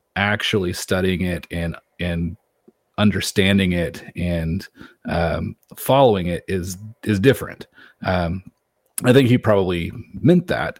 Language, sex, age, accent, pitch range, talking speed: English, male, 30-49, American, 95-115 Hz, 115 wpm